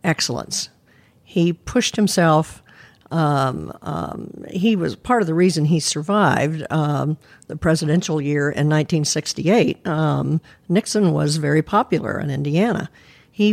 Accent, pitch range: American, 150-175 Hz